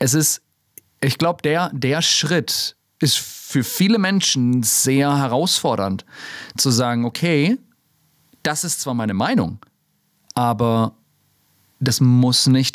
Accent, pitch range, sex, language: German, 115-145 Hz, male, German